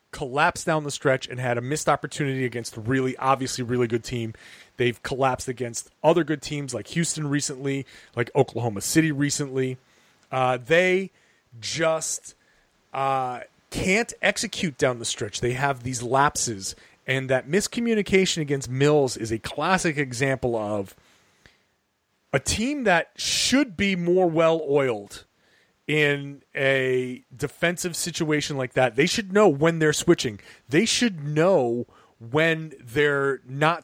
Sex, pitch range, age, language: male, 130-165 Hz, 30-49, English